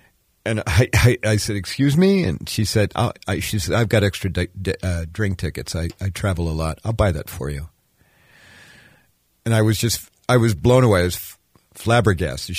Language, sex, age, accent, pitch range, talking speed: English, male, 50-69, American, 90-110 Hz, 200 wpm